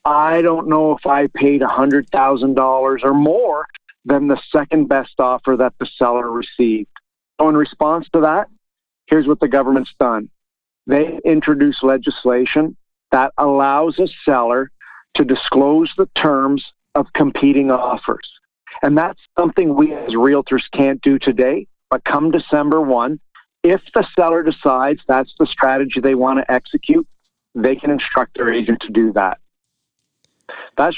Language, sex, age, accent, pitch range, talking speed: English, male, 50-69, American, 130-160 Hz, 145 wpm